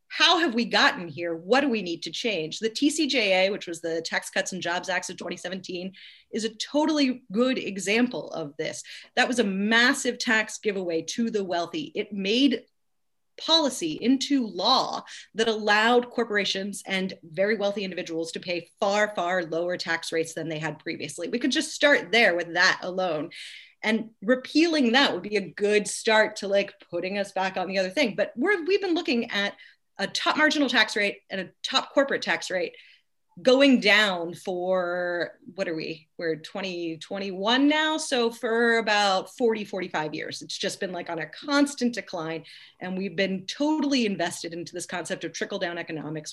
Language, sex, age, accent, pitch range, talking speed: English, female, 30-49, American, 175-245 Hz, 180 wpm